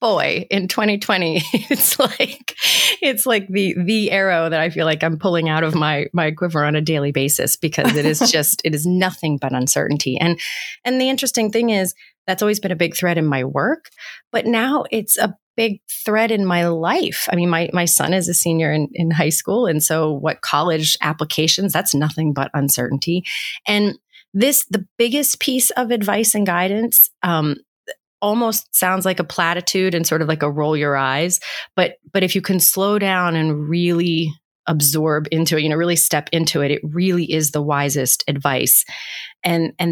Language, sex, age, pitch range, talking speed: English, female, 30-49, 155-195 Hz, 190 wpm